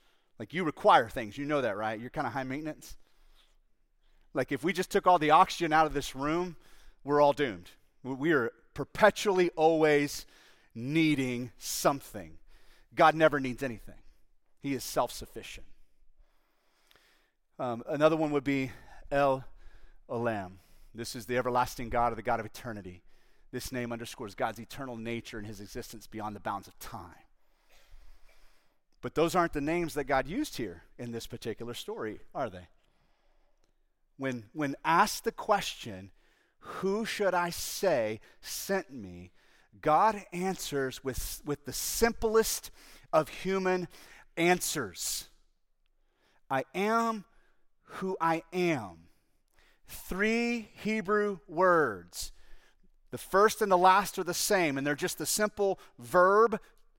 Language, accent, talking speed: English, American, 135 wpm